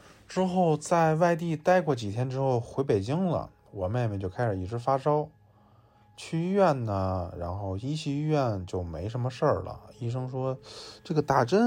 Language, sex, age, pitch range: Chinese, male, 20-39, 105-150 Hz